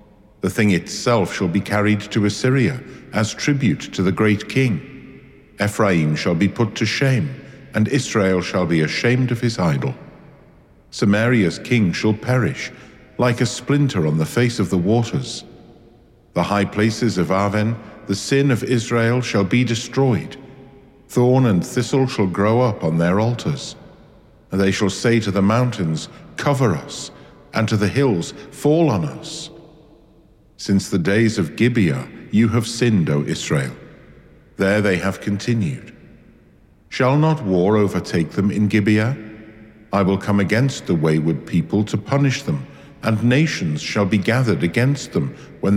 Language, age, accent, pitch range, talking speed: English, 50-69, British, 100-125 Hz, 155 wpm